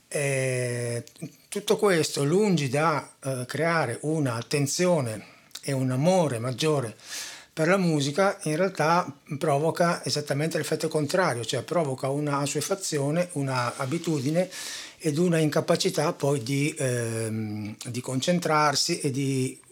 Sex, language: male, Italian